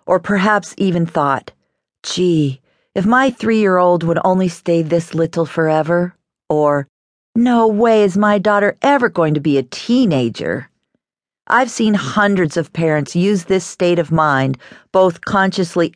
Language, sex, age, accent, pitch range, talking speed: English, female, 50-69, American, 150-205 Hz, 145 wpm